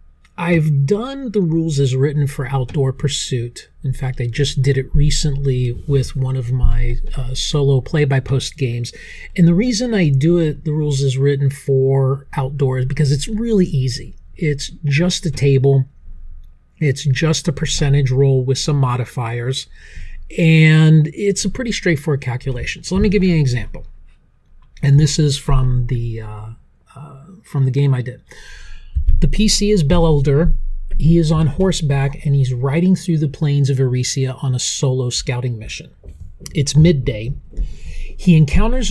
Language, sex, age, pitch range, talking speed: English, male, 40-59, 130-155 Hz, 160 wpm